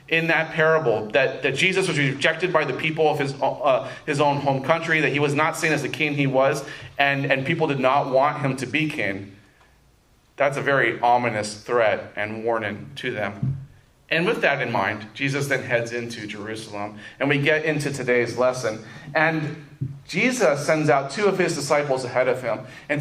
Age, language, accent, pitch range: 30-49, English, American, 125-155 Hz